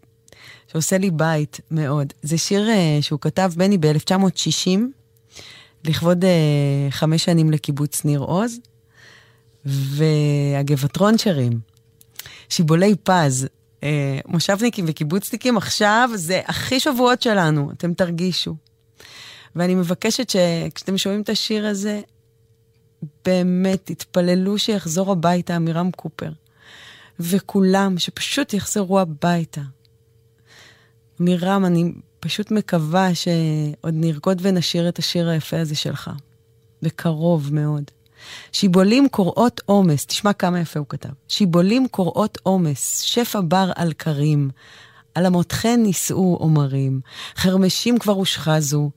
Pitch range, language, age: 145-190 Hz, English, 20-39